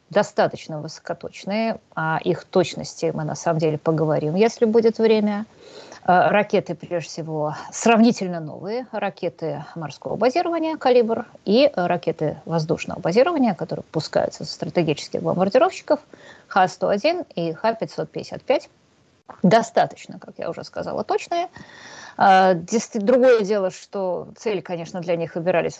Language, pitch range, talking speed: Russian, 165-230 Hz, 110 wpm